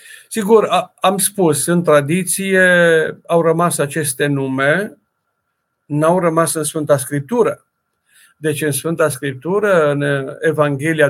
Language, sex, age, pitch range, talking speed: Romanian, male, 50-69, 150-185 Hz, 110 wpm